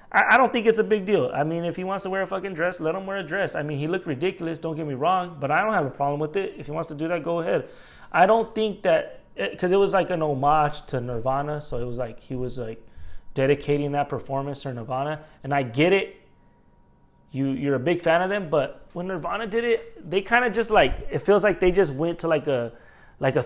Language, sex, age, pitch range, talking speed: English, male, 20-39, 135-180 Hz, 270 wpm